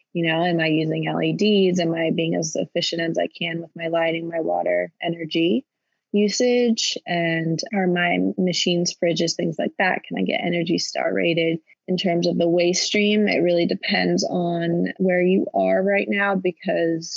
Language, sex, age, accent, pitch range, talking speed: English, female, 20-39, American, 165-185 Hz, 180 wpm